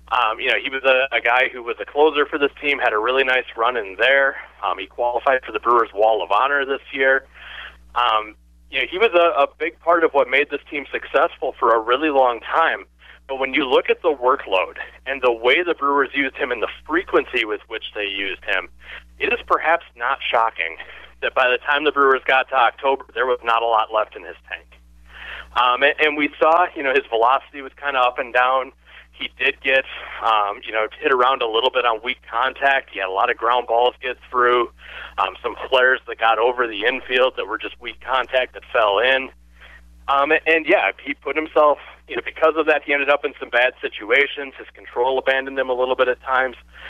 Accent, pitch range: American, 120-145 Hz